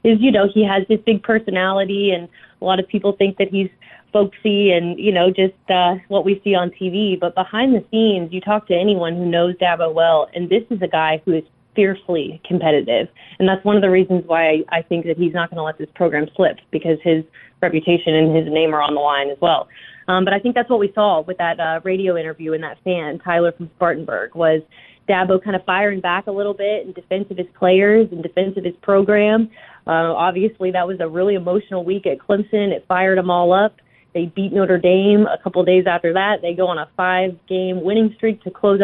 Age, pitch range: 20-39, 175-205 Hz